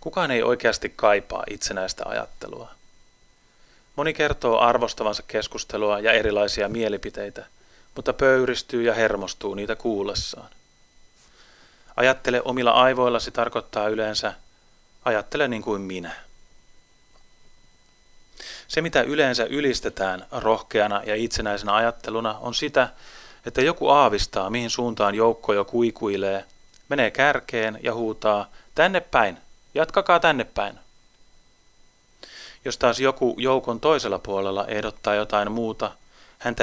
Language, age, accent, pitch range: Finnish, 30-49, native, 100-125 Hz